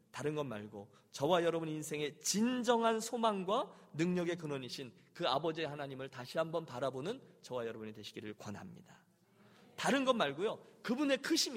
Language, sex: Korean, male